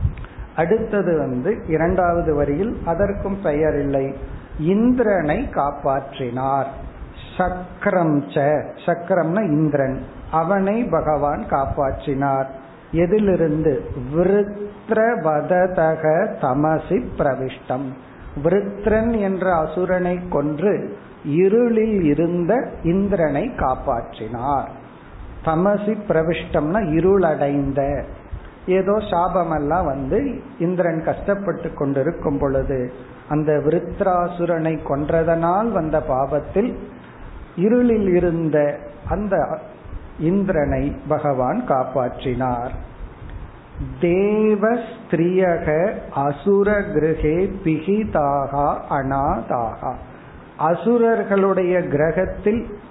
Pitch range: 140-195 Hz